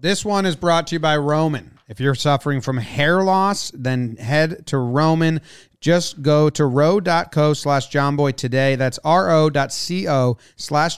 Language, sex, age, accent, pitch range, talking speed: English, male, 30-49, American, 135-165 Hz, 160 wpm